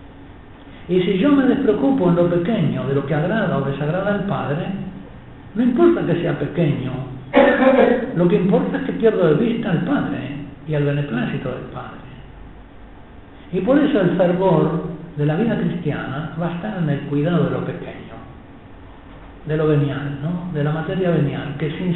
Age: 60-79